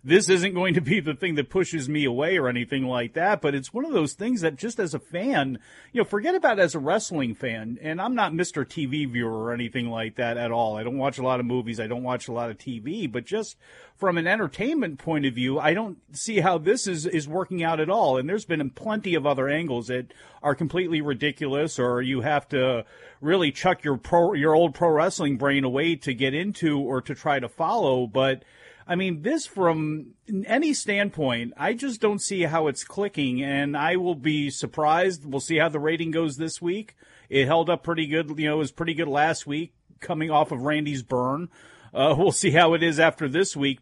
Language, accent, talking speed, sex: English, American, 225 wpm, male